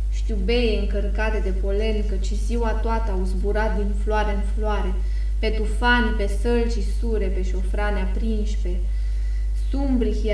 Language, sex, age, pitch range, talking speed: English, female, 20-39, 195-225 Hz, 130 wpm